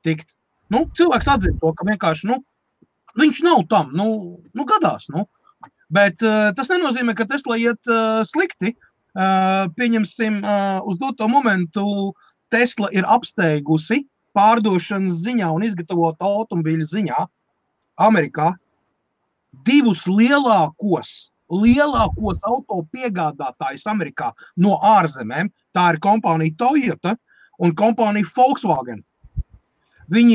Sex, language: male, English